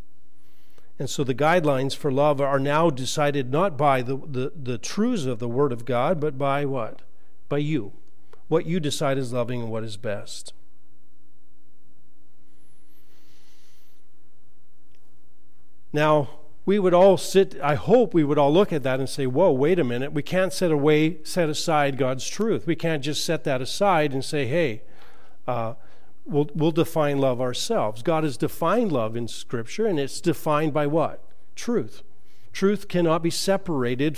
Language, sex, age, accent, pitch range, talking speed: English, male, 50-69, American, 125-165 Hz, 160 wpm